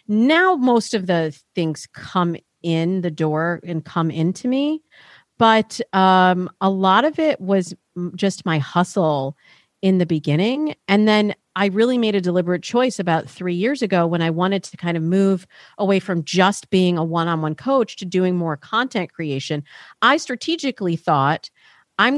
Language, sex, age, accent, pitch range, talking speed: English, female, 40-59, American, 170-215 Hz, 165 wpm